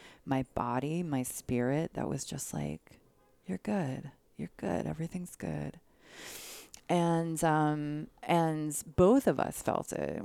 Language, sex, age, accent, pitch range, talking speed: English, female, 30-49, American, 125-150 Hz, 130 wpm